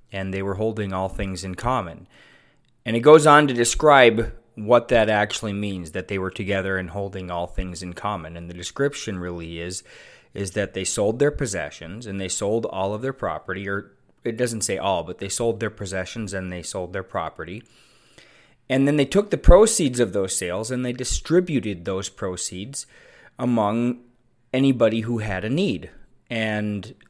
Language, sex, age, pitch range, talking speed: English, male, 20-39, 100-120 Hz, 180 wpm